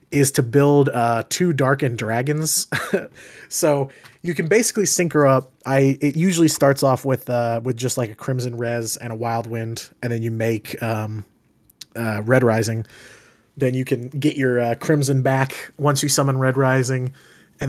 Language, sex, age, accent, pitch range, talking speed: English, male, 30-49, American, 120-145 Hz, 180 wpm